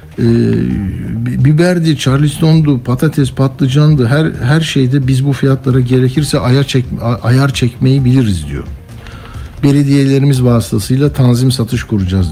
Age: 60-79